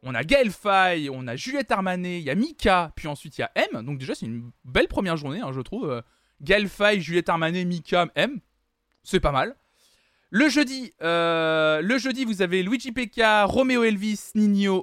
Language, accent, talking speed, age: French, French, 200 wpm, 20-39